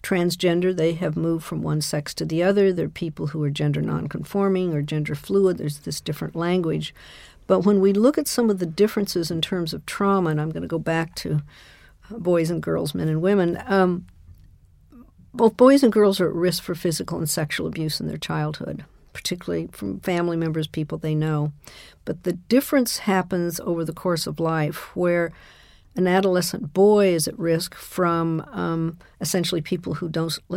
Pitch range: 155-185 Hz